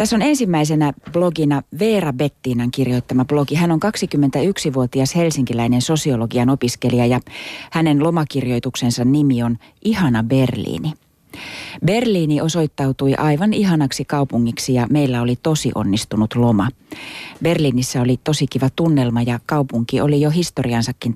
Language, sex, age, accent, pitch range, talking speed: Finnish, female, 30-49, native, 125-160 Hz, 120 wpm